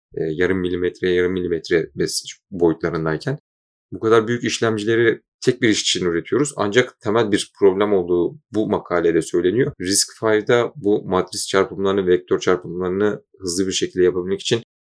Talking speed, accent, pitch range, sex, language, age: 135 wpm, native, 95-110 Hz, male, Turkish, 30-49